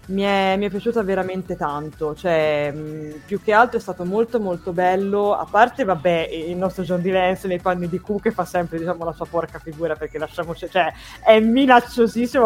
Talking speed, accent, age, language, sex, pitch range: 195 wpm, native, 20-39, Italian, female, 160-205 Hz